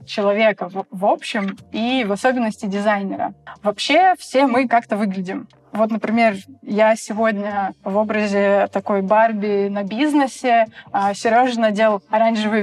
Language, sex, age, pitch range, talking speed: Russian, female, 20-39, 200-230 Hz, 120 wpm